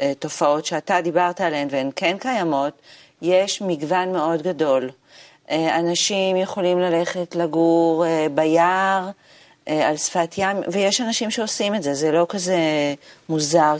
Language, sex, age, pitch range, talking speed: Hebrew, female, 40-59, 165-200 Hz, 120 wpm